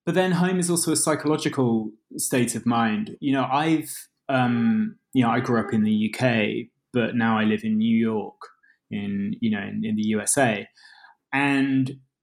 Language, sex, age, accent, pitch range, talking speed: English, male, 20-39, British, 115-145 Hz, 180 wpm